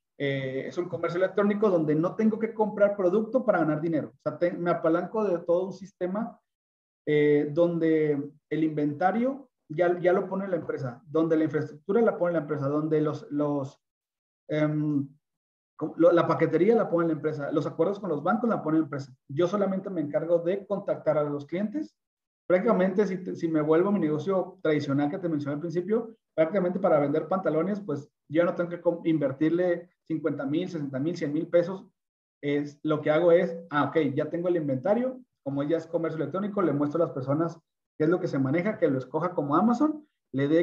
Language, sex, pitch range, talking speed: Spanish, male, 145-180 Hz, 200 wpm